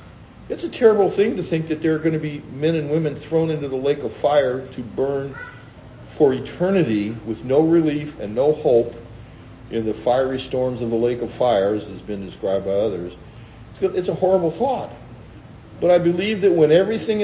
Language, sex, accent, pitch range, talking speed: English, male, American, 115-155 Hz, 195 wpm